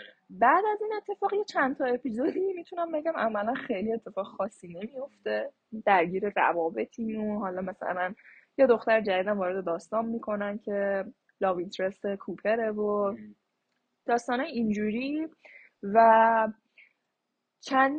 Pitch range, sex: 195-265 Hz, female